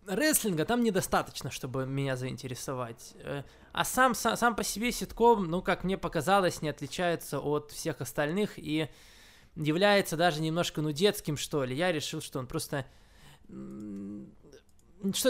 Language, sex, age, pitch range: Russian, male, 20-39, 135-185 Hz